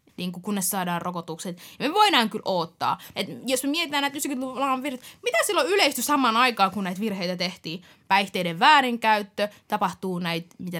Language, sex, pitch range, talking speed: Finnish, female, 185-235 Hz, 145 wpm